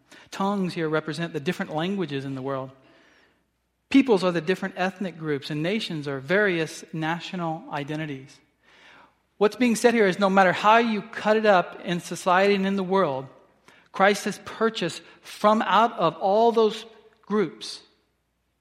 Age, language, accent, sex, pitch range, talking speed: 40-59, English, American, male, 150-195 Hz, 155 wpm